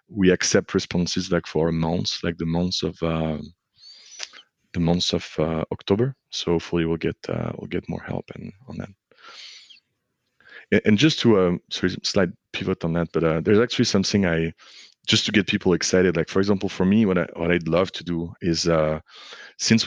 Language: English